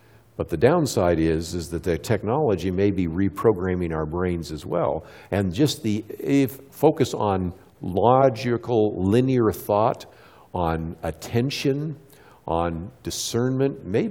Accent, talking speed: American, 125 wpm